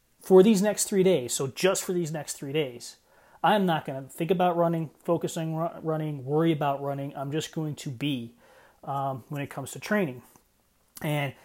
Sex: male